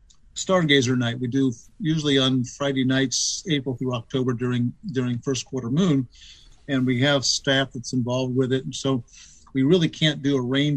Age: 50-69